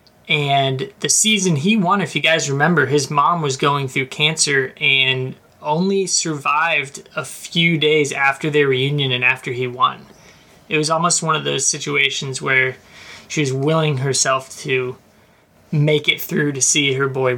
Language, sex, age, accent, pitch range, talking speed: English, male, 20-39, American, 130-150 Hz, 165 wpm